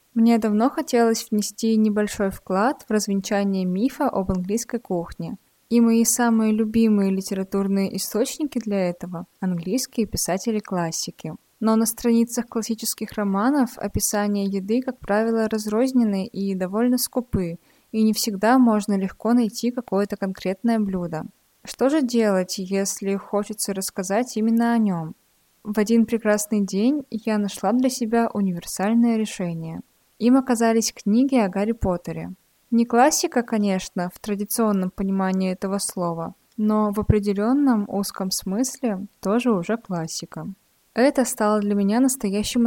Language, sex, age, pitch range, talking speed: Russian, female, 20-39, 195-235 Hz, 125 wpm